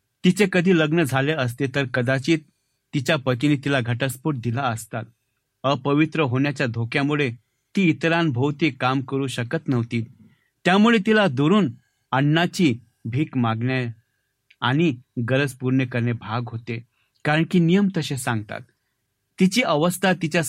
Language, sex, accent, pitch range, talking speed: Marathi, male, native, 125-160 Hz, 125 wpm